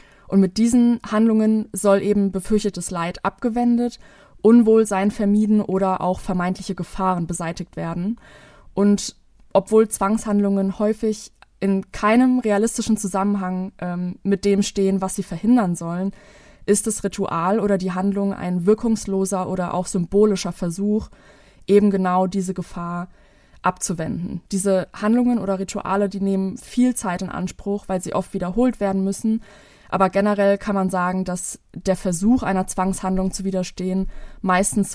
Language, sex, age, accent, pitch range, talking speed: German, female, 20-39, German, 185-210 Hz, 135 wpm